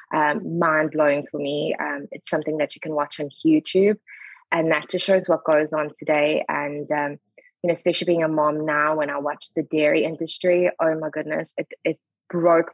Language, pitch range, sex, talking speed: English, 155-190 Hz, female, 200 wpm